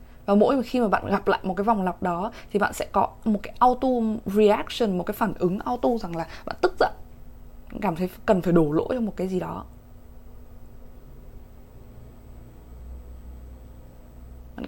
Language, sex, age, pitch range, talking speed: Vietnamese, female, 20-39, 170-220 Hz, 170 wpm